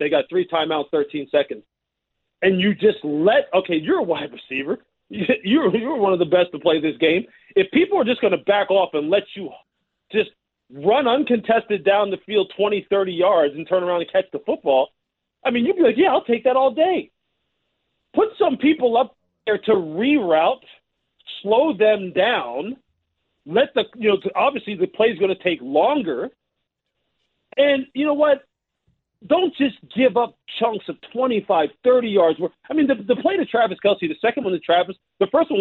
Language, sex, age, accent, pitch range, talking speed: English, male, 40-59, American, 185-260 Hz, 195 wpm